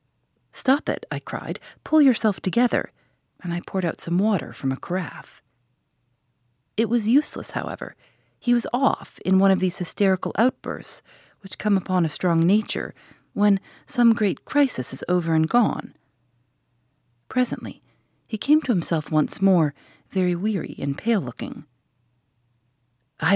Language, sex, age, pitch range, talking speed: English, female, 40-59, 135-210 Hz, 140 wpm